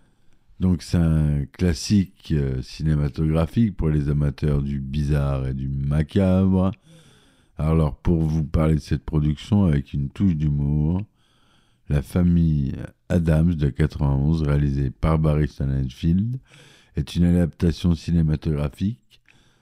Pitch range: 75-90 Hz